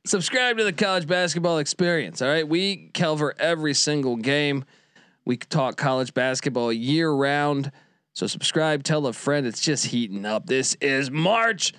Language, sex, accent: English, male, American